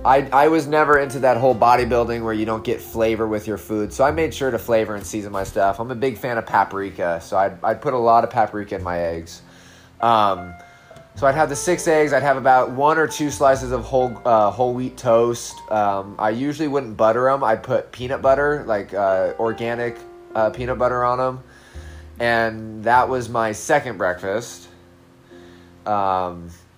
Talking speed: 195 wpm